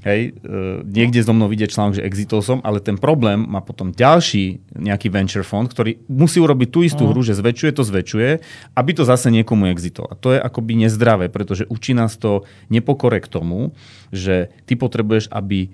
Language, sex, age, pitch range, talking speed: Slovak, male, 30-49, 100-125 Hz, 185 wpm